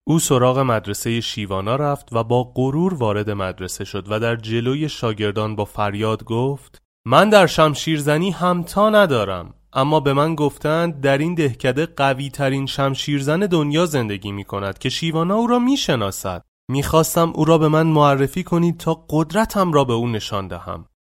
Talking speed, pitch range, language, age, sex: 160 wpm, 105-155 Hz, Persian, 30-49, male